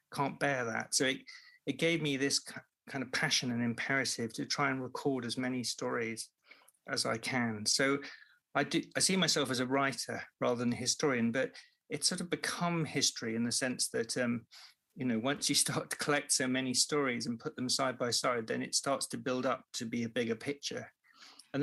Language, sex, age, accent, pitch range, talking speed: English, male, 40-59, British, 120-145 Hz, 215 wpm